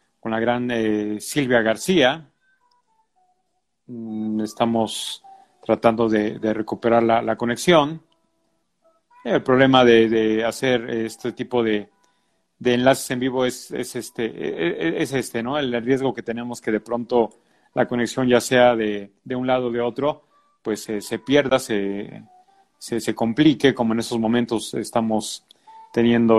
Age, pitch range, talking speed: 40-59, 115-155 Hz, 145 wpm